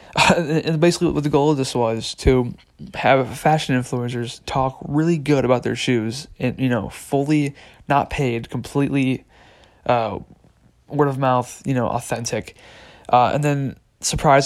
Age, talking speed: 20-39, 155 wpm